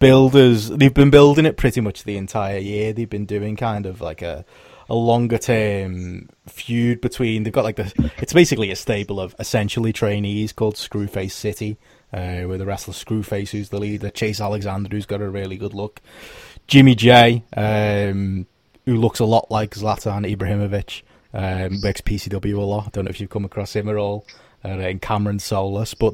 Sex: male